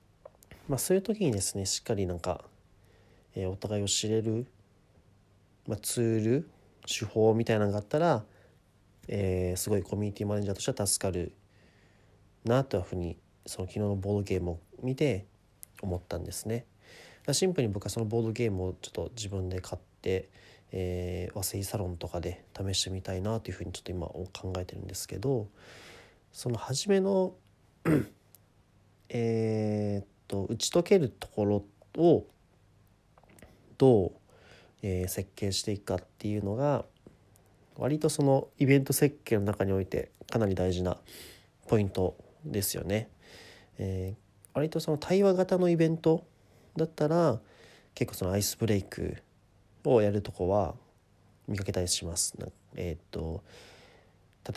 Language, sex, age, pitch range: Japanese, male, 40-59, 95-120 Hz